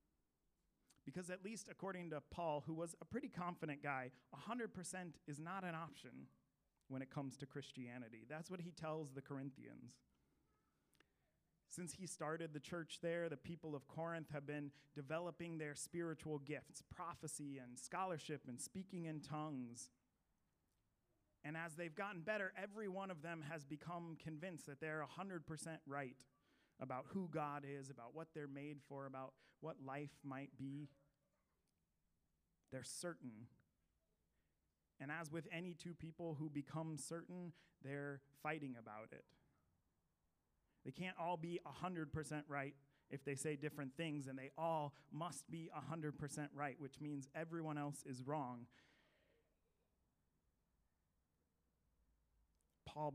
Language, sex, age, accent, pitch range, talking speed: English, male, 30-49, American, 130-165 Hz, 135 wpm